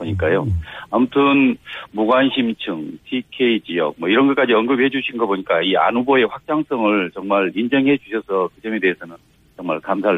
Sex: male